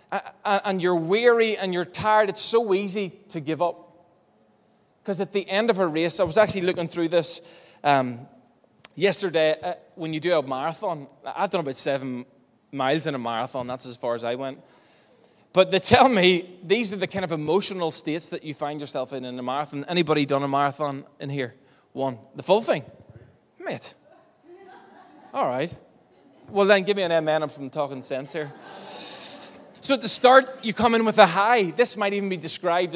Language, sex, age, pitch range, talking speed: English, male, 20-39, 155-215 Hz, 190 wpm